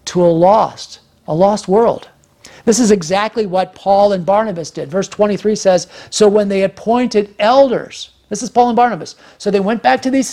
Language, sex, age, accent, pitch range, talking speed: English, male, 50-69, American, 170-210 Hz, 190 wpm